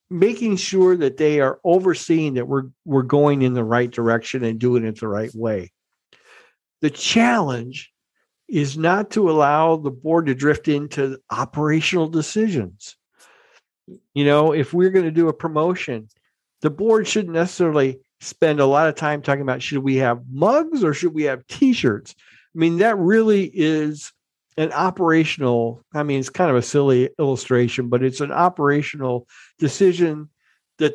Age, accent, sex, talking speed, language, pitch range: 50-69, American, male, 155 wpm, English, 125-165 Hz